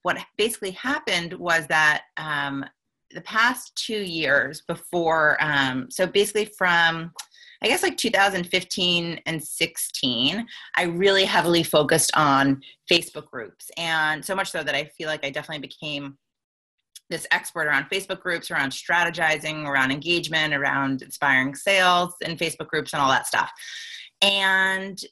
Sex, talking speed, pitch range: female, 145 wpm, 150-195 Hz